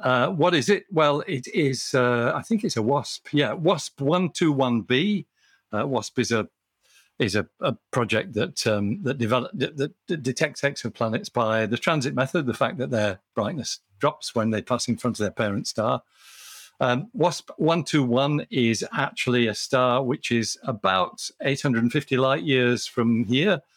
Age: 50-69